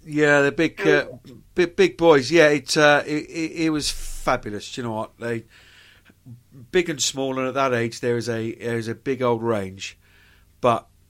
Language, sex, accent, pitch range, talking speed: English, male, British, 100-145 Hz, 195 wpm